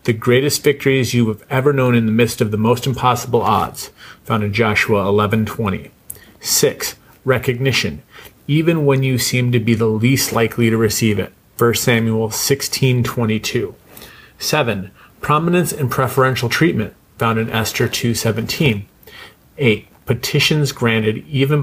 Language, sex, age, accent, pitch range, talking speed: English, male, 30-49, American, 110-130 Hz, 140 wpm